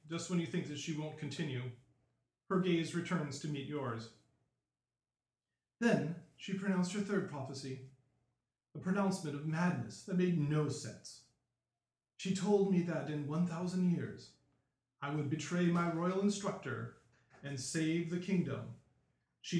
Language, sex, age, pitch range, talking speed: English, male, 40-59, 130-195 Hz, 140 wpm